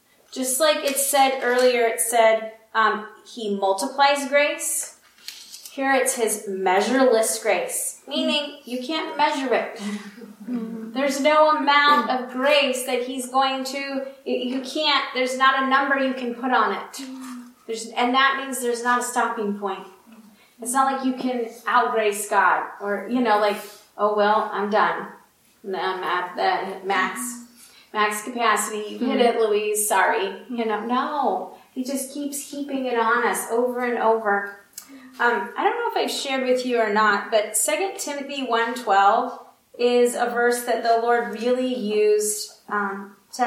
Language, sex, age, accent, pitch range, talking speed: English, female, 30-49, American, 215-265 Hz, 155 wpm